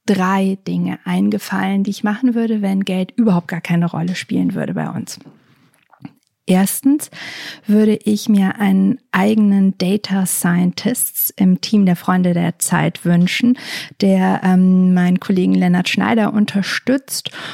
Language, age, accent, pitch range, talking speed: German, 50-69, German, 190-210 Hz, 135 wpm